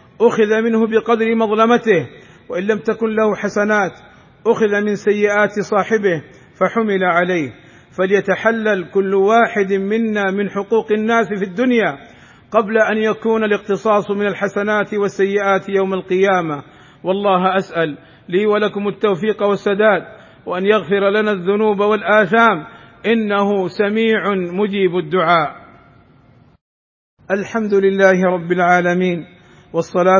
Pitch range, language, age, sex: 185-205 Hz, Arabic, 50-69, male